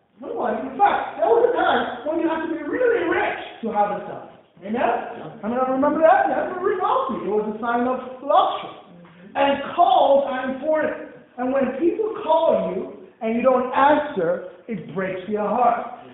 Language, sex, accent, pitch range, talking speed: English, male, American, 230-315 Hz, 180 wpm